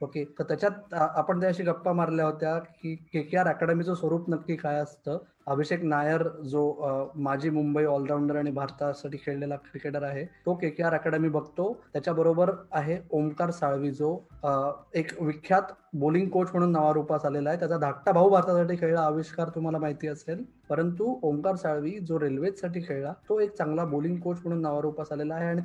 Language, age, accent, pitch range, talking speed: Marathi, 20-39, native, 155-200 Hz, 170 wpm